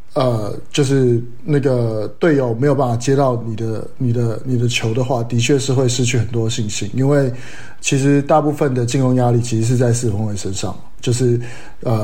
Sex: male